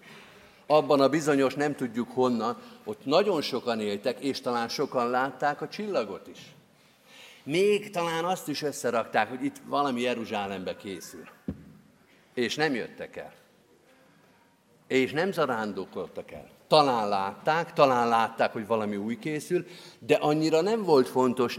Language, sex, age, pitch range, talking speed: Hungarian, male, 50-69, 120-160 Hz, 135 wpm